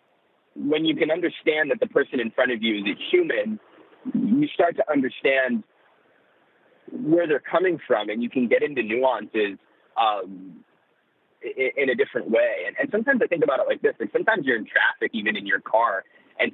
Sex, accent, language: male, American, English